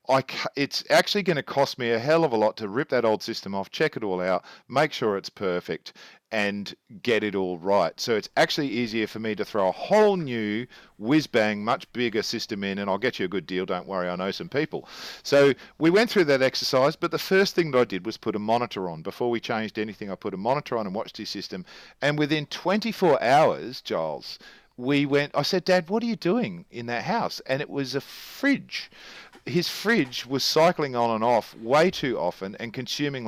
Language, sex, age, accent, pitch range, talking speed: English, male, 50-69, Australian, 110-150 Hz, 225 wpm